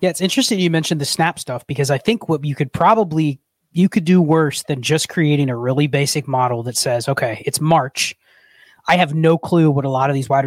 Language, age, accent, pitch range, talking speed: English, 30-49, American, 135-175 Hz, 235 wpm